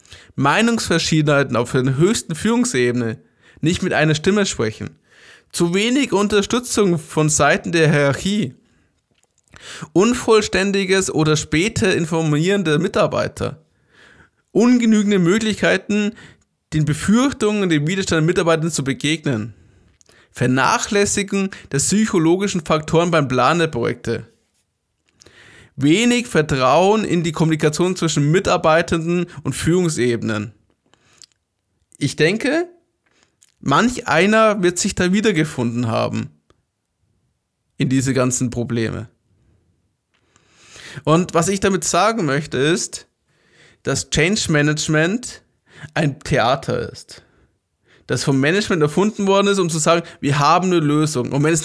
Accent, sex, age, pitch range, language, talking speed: German, male, 20-39, 140-195 Hz, German, 105 wpm